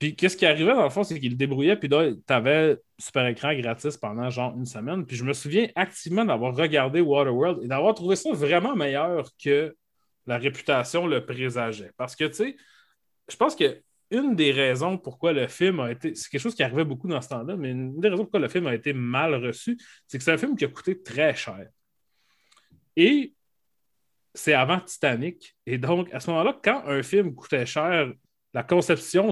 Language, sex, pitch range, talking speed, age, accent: French, male, 130-170 Hz, 210 wpm, 30-49, Canadian